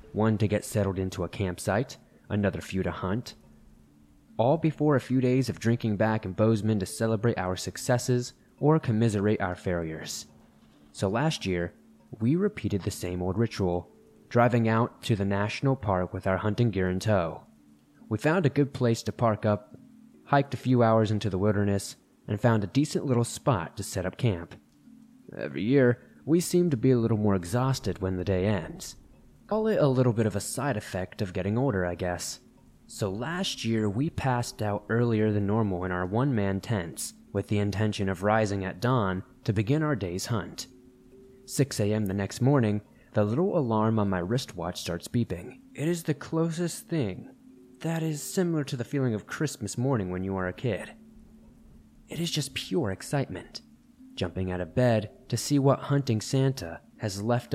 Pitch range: 95-130 Hz